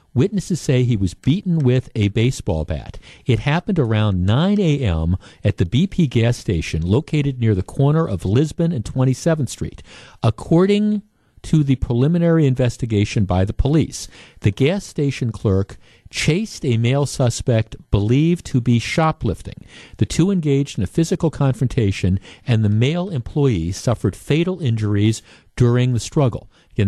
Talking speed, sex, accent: 145 wpm, male, American